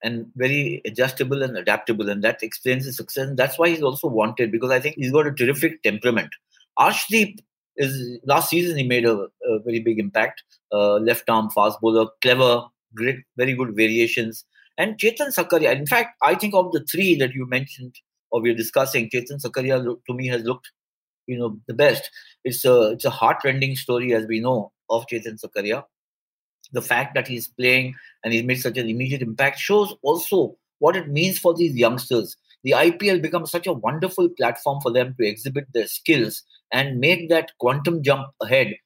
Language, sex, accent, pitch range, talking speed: English, male, Indian, 120-155 Hz, 190 wpm